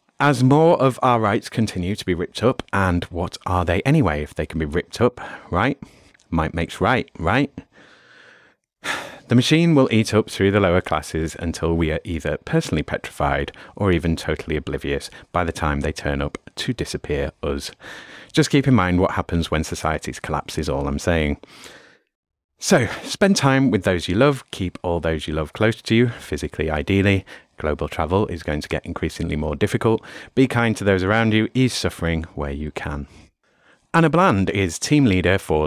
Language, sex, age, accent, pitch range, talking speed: English, male, 30-49, British, 80-120 Hz, 185 wpm